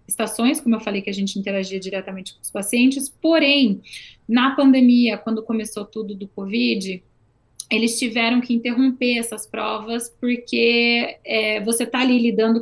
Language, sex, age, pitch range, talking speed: Portuguese, female, 20-39, 210-245 Hz, 145 wpm